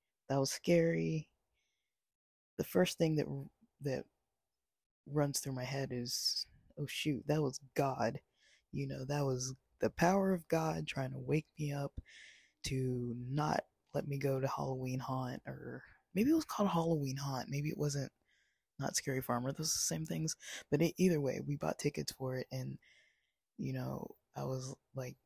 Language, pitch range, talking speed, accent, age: English, 125-145 Hz, 170 wpm, American, 20-39